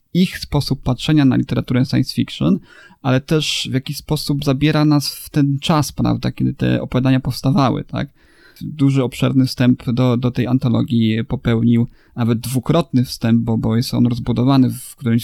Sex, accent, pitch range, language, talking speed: male, native, 125-140 Hz, Polish, 160 wpm